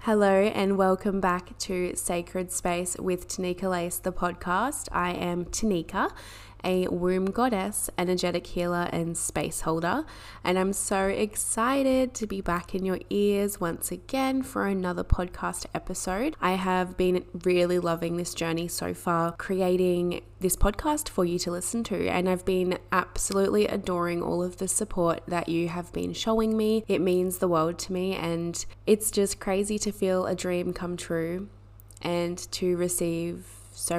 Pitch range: 170-190 Hz